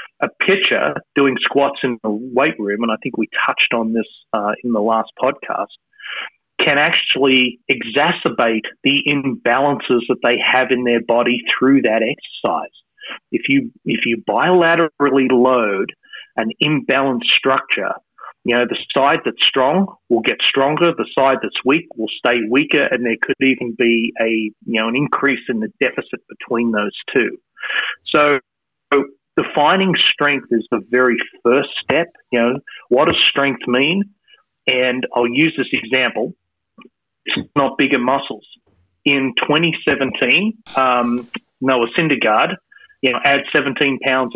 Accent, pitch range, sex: Australian, 120-145 Hz, male